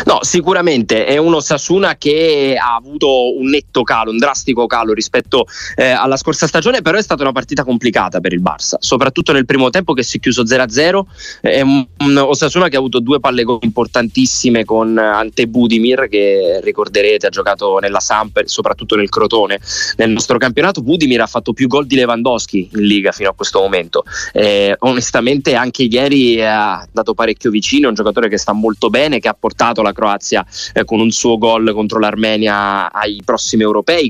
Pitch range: 110-140 Hz